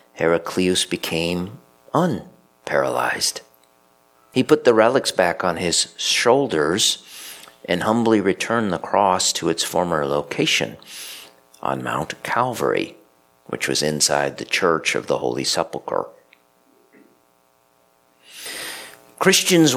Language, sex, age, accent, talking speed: English, male, 50-69, American, 100 wpm